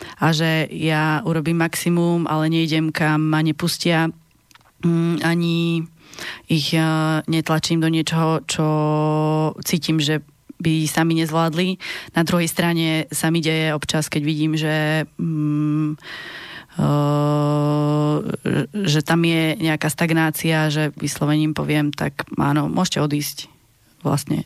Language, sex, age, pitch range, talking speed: Slovak, female, 20-39, 155-170 Hz, 110 wpm